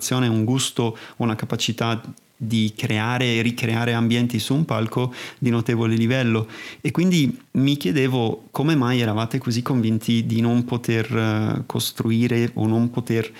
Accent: native